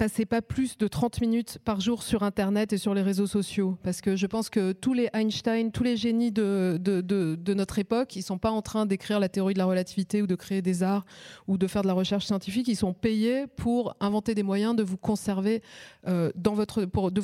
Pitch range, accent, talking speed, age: 185-215 Hz, French, 245 wpm, 30-49